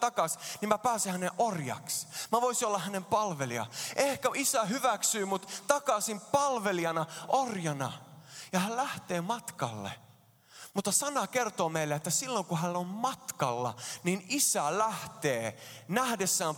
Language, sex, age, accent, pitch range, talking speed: Finnish, male, 20-39, native, 145-235 Hz, 130 wpm